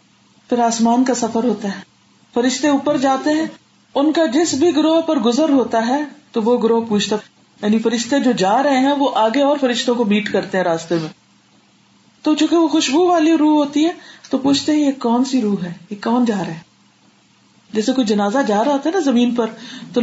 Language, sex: Urdu, female